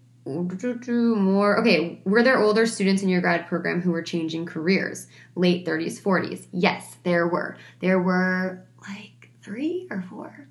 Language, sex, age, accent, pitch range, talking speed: English, female, 20-39, American, 175-225 Hz, 150 wpm